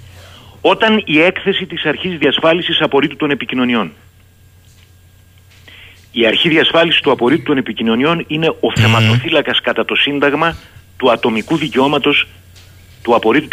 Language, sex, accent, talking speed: Greek, male, native, 120 wpm